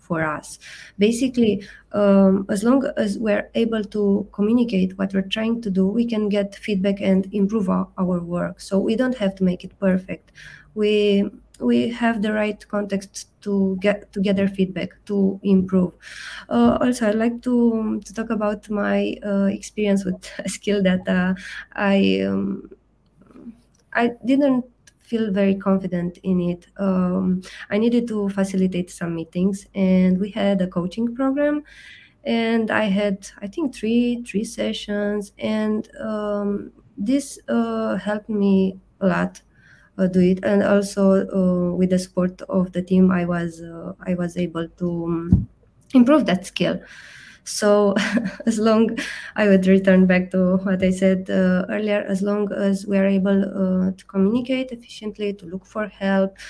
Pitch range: 185-215 Hz